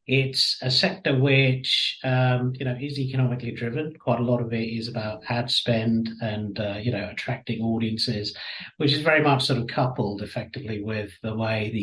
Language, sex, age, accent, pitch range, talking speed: English, male, 50-69, British, 115-130 Hz, 190 wpm